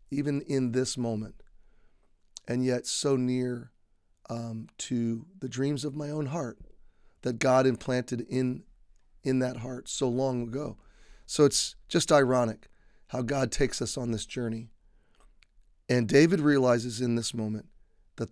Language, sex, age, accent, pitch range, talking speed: English, male, 30-49, American, 120-140 Hz, 145 wpm